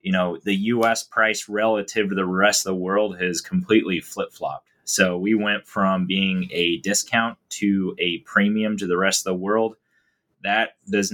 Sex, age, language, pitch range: male, 30-49, English, 90-105 Hz